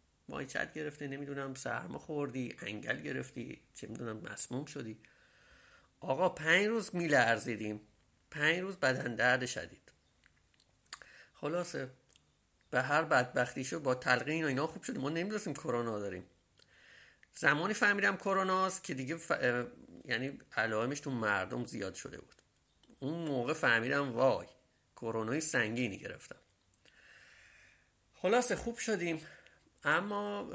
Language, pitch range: English, 115-170 Hz